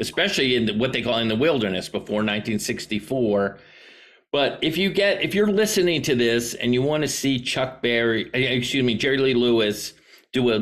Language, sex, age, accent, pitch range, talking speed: English, male, 50-69, American, 105-135 Hz, 185 wpm